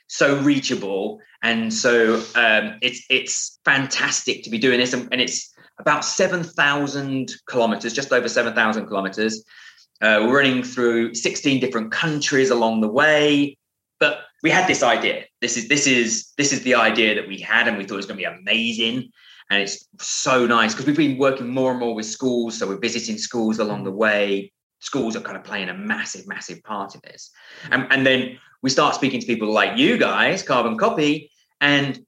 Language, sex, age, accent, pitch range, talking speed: English, male, 20-39, British, 115-140 Hz, 190 wpm